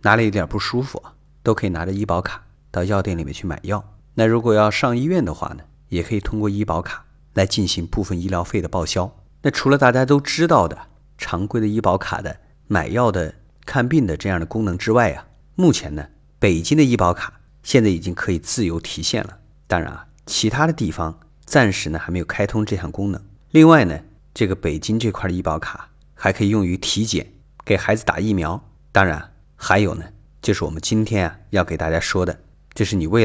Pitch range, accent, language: 90-115 Hz, native, Chinese